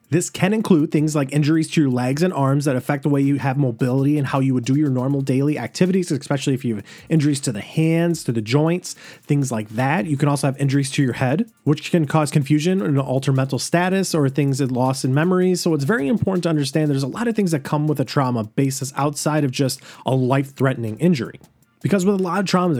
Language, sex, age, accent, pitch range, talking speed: English, male, 30-49, American, 130-155 Hz, 245 wpm